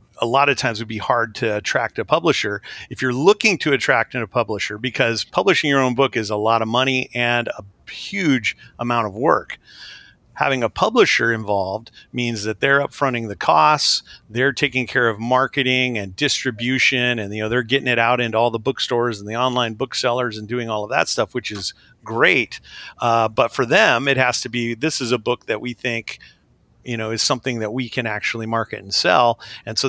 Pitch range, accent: 115-130 Hz, American